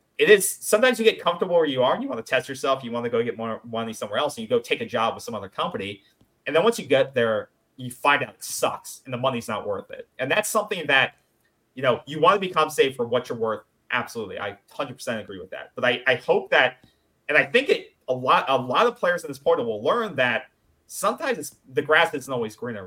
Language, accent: English, American